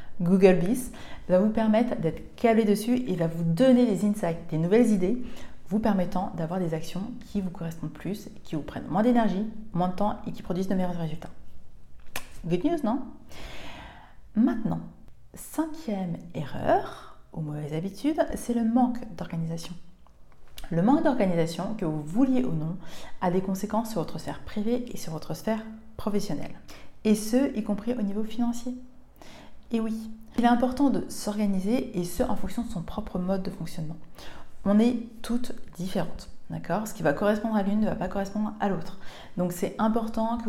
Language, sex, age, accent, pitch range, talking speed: French, female, 30-49, French, 180-235 Hz, 175 wpm